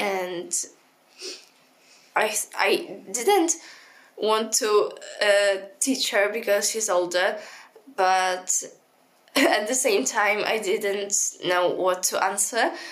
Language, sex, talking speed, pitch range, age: English, female, 105 wpm, 175-205 Hz, 10-29